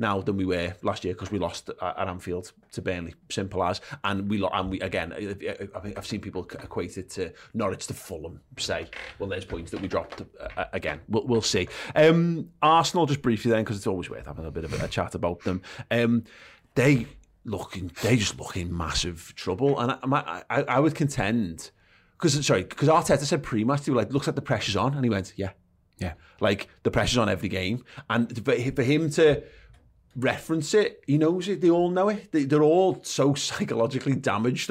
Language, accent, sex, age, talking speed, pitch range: English, British, male, 30-49, 205 wpm, 95-140 Hz